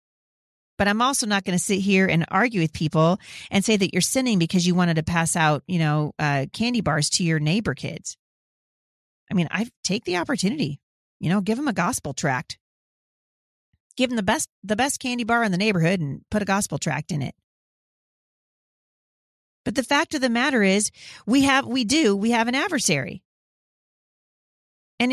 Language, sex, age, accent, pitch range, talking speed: English, female, 40-59, American, 165-230 Hz, 190 wpm